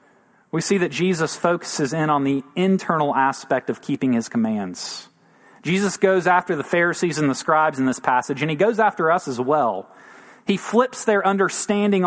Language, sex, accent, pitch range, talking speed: English, male, American, 150-205 Hz, 180 wpm